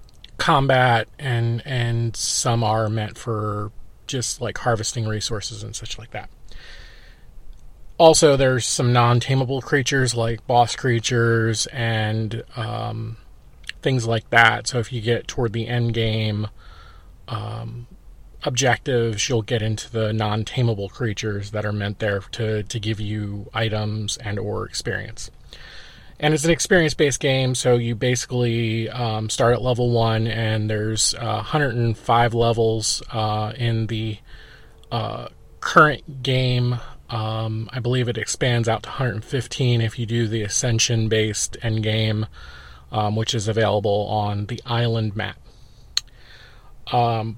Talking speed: 135 wpm